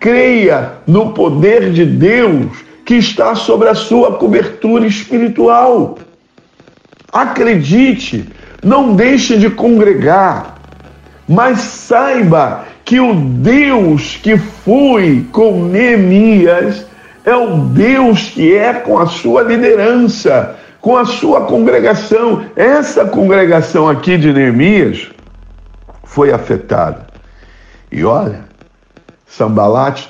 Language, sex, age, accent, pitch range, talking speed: Portuguese, male, 60-79, Brazilian, 150-235 Hz, 100 wpm